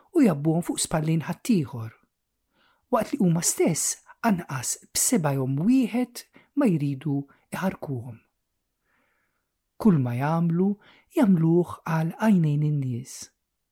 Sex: male